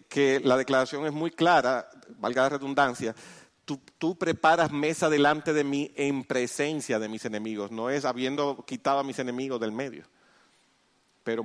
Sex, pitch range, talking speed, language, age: male, 105-140 Hz, 160 wpm, English, 40-59